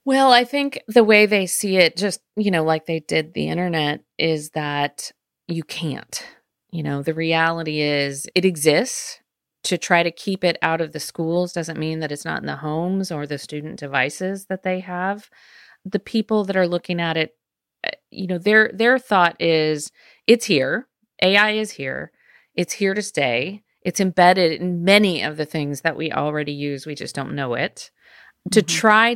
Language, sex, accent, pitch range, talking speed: English, female, American, 160-210 Hz, 185 wpm